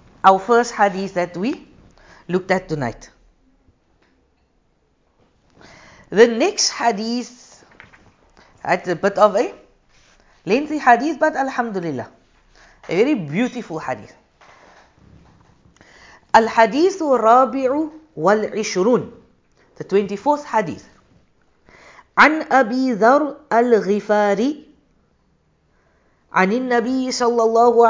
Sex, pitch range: female, 195-230 Hz